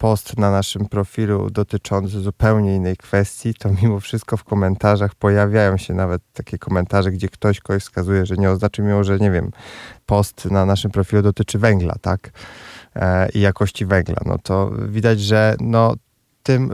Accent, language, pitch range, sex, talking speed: native, Polish, 100-115 Hz, male, 165 wpm